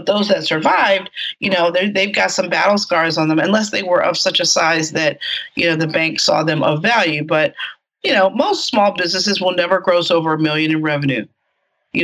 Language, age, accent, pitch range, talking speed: English, 30-49, American, 160-195 Hz, 220 wpm